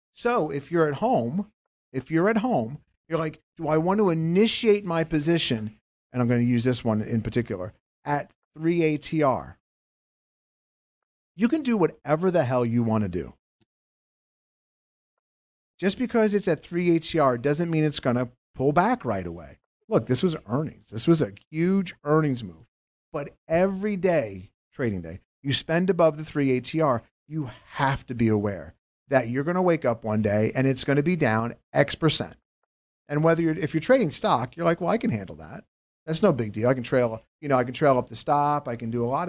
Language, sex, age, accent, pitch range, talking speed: English, male, 50-69, American, 120-165 Hz, 190 wpm